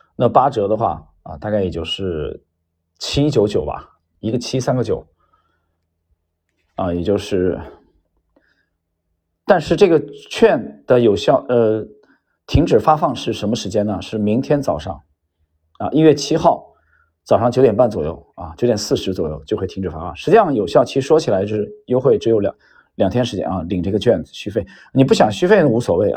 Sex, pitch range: male, 85-130 Hz